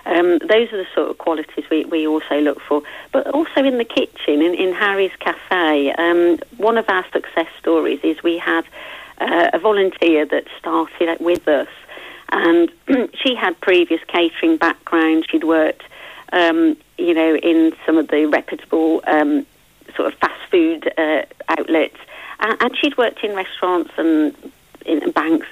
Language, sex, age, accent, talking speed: English, female, 40-59, British, 160 wpm